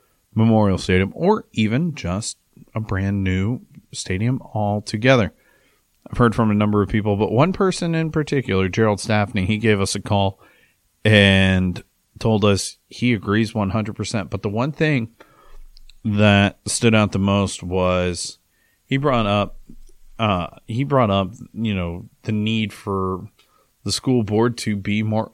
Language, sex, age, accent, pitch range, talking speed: English, male, 30-49, American, 100-115 Hz, 150 wpm